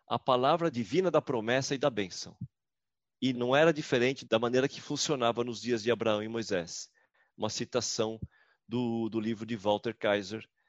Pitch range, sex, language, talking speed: 115-150 Hz, male, Portuguese, 170 wpm